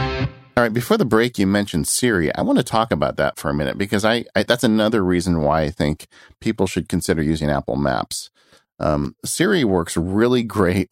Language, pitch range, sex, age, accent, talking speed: English, 80-105 Hz, male, 50-69, American, 205 wpm